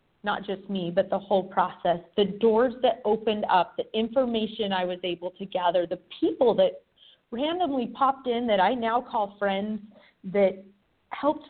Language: English